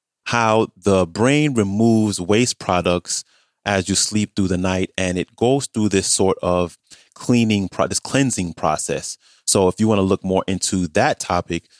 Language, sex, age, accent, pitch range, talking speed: English, male, 30-49, American, 90-105 Hz, 170 wpm